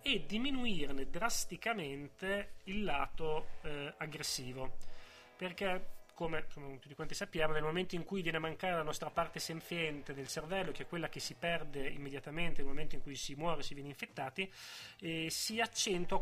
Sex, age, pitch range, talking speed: male, 30-49, 150-195 Hz, 165 wpm